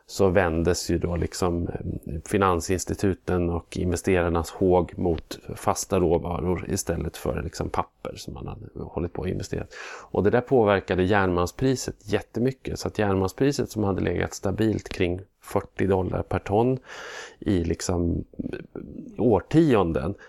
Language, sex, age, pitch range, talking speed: Swedish, male, 30-49, 85-100 Hz, 120 wpm